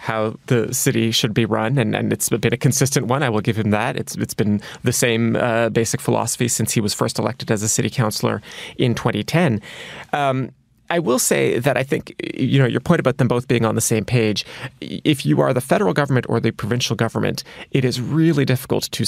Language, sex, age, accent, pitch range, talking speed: English, male, 30-49, American, 115-135 Hz, 225 wpm